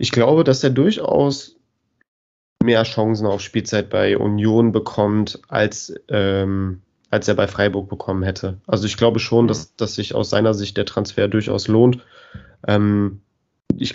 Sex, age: male, 20-39